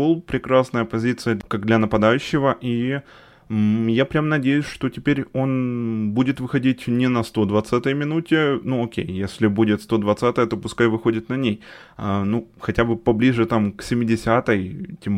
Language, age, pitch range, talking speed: Ukrainian, 20-39, 110-145 Hz, 150 wpm